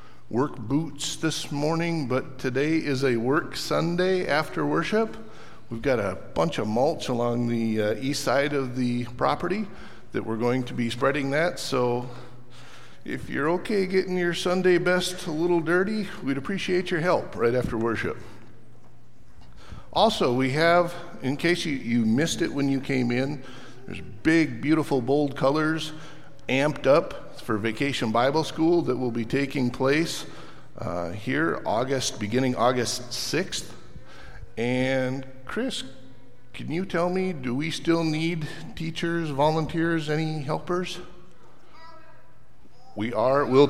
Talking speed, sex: 140 wpm, male